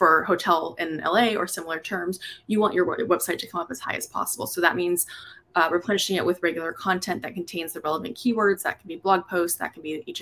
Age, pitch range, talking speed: 20-39, 160-195 Hz, 240 wpm